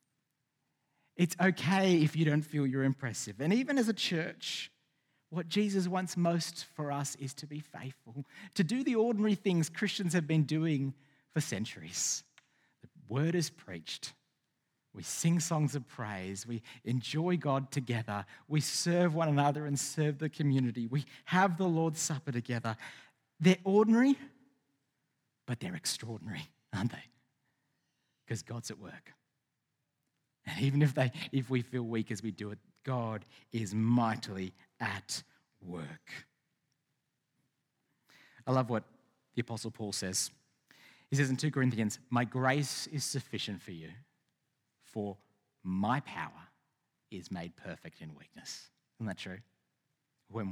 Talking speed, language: 140 wpm, English